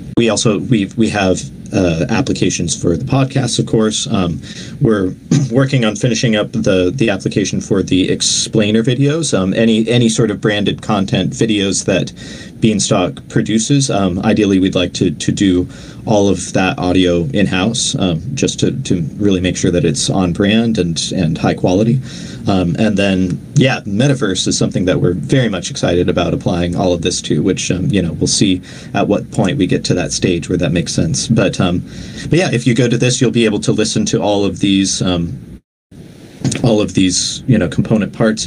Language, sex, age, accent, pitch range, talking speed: English, male, 40-59, American, 90-115 Hz, 195 wpm